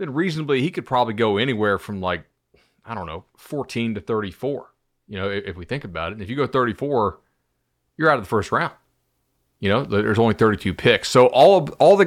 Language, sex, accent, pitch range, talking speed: English, male, American, 95-125 Hz, 225 wpm